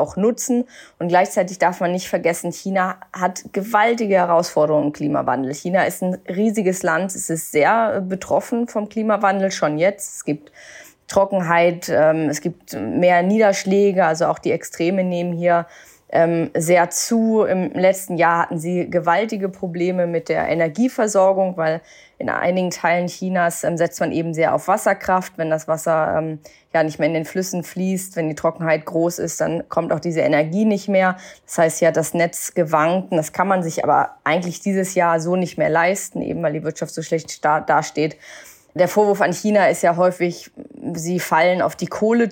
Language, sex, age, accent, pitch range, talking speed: German, female, 20-39, German, 165-195 Hz, 175 wpm